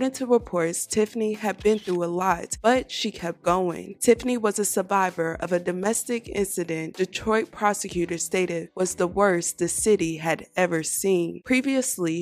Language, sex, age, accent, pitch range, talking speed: English, female, 20-39, American, 175-215 Hz, 160 wpm